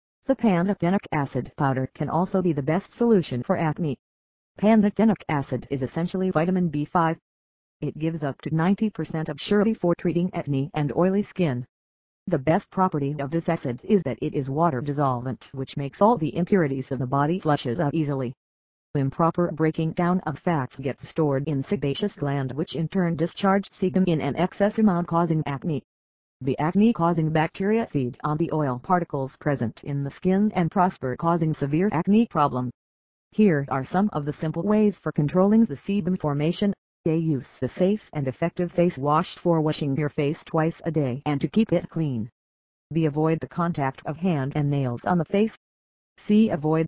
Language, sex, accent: English, female, American